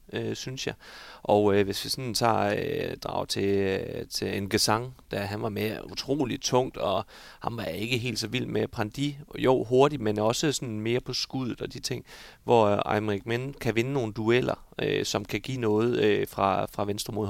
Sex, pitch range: male, 100-125 Hz